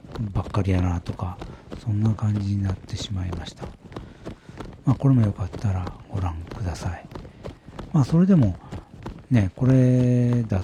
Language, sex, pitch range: Japanese, male, 95-125 Hz